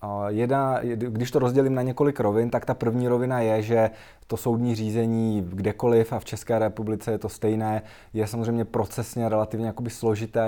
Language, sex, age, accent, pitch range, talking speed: Czech, male, 20-39, native, 105-115 Hz, 165 wpm